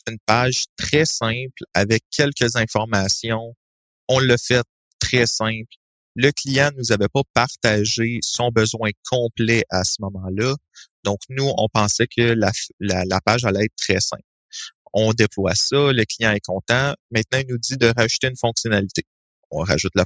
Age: 30-49